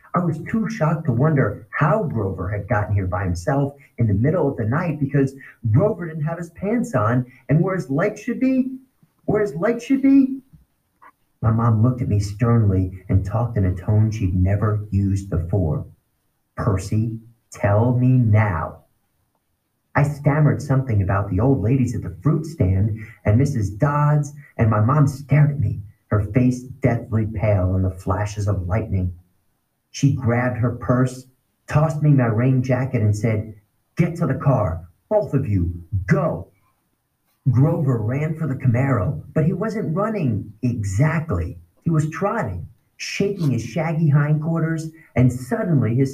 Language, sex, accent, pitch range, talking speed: English, male, American, 110-155 Hz, 160 wpm